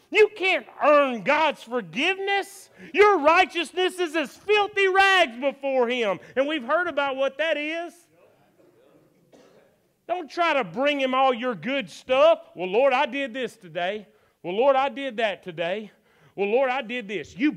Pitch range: 200-285 Hz